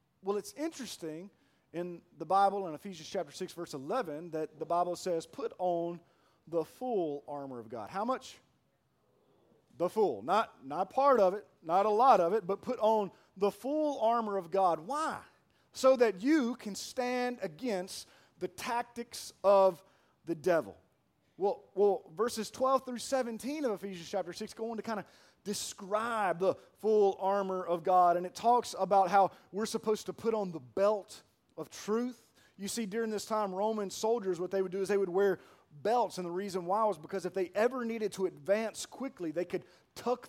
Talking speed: 185 wpm